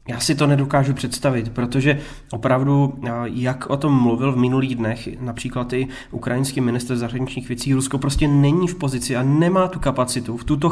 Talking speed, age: 175 wpm, 20-39